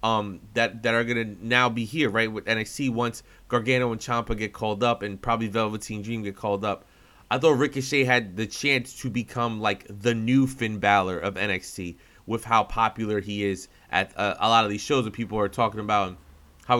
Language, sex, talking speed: English, male, 210 wpm